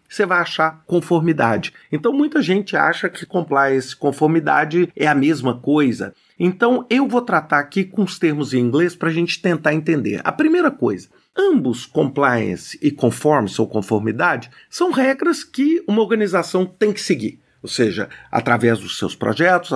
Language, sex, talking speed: Portuguese, male, 160 wpm